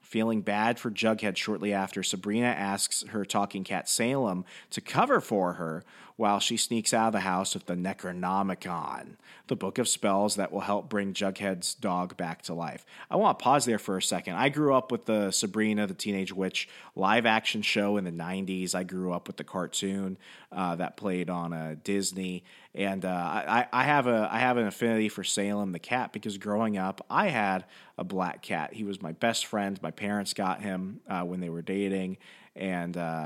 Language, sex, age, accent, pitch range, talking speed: English, male, 30-49, American, 90-105 Hz, 195 wpm